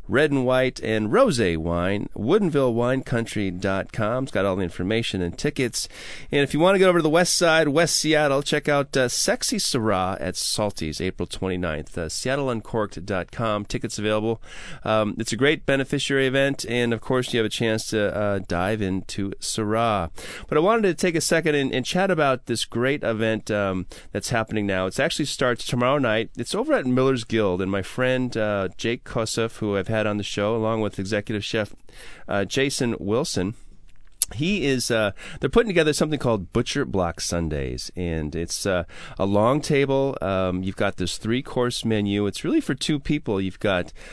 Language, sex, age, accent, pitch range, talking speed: English, male, 30-49, American, 100-135 Hz, 185 wpm